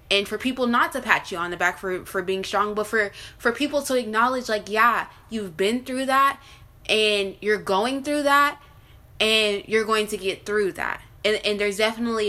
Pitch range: 185-220 Hz